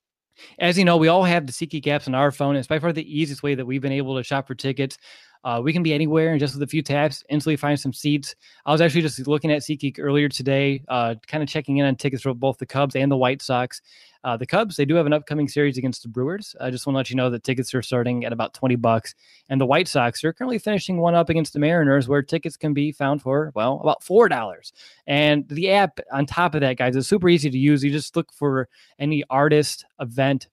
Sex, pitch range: male, 135-160 Hz